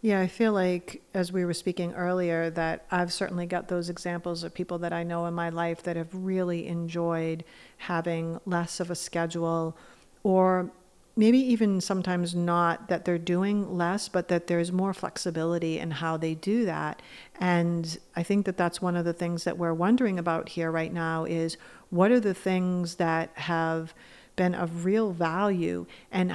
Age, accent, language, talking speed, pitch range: 50-69, American, English, 180 wpm, 170-190 Hz